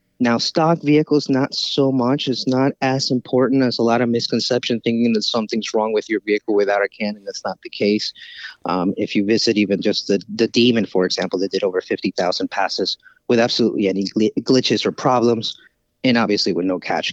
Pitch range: 105-130 Hz